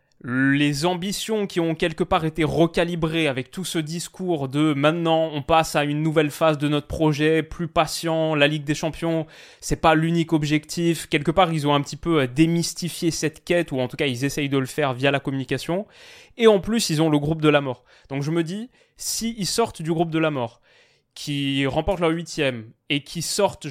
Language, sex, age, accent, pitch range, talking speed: French, male, 20-39, French, 145-170 Hz, 215 wpm